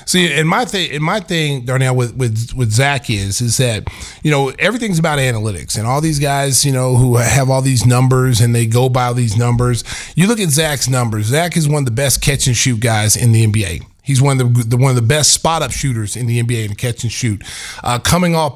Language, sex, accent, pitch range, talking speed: English, male, American, 125-175 Hz, 250 wpm